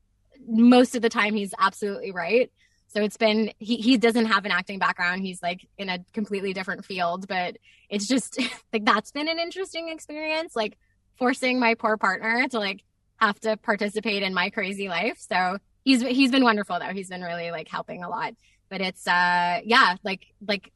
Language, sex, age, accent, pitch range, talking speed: English, female, 20-39, American, 175-225 Hz, 190 wpm